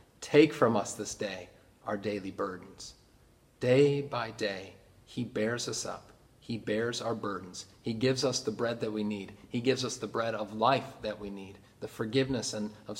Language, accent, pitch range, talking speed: English, American, 105-125 Hz, 185 wpm